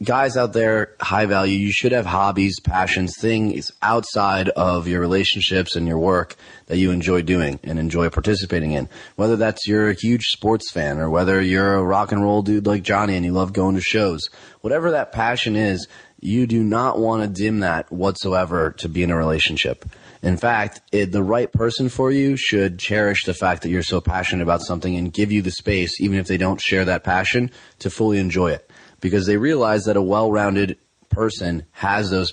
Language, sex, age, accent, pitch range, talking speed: English, male, 30-49, American, 90-105 Hz, 200 wpm